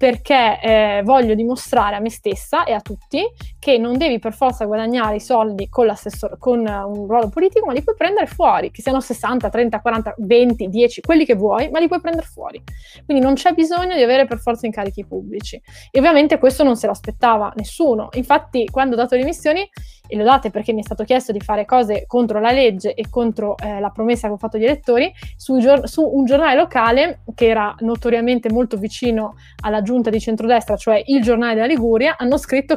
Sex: female